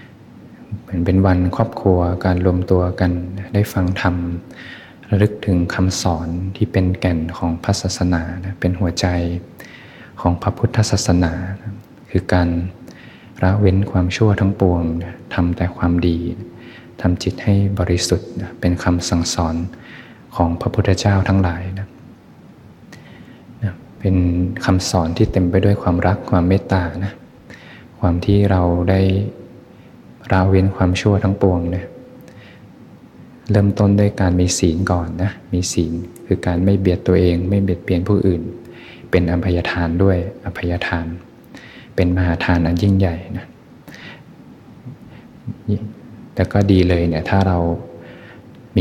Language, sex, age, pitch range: Thai, male, 20-39, 85-100 Hz